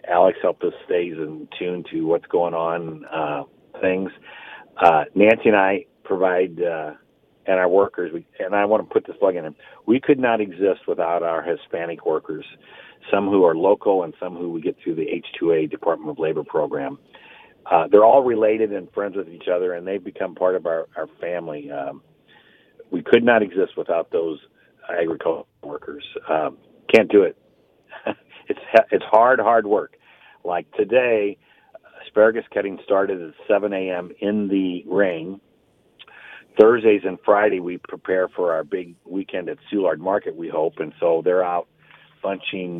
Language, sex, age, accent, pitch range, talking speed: English, male, 40-59, American, 85-110 Hz, 165 wpm